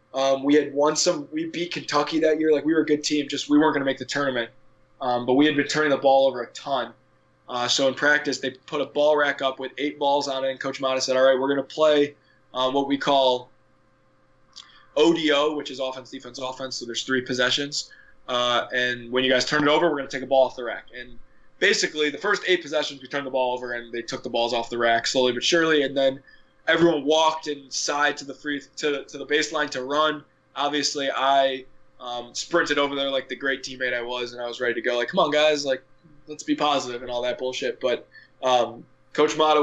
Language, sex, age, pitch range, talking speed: English, male, 20-39, 130-150 Hz, 245 wpm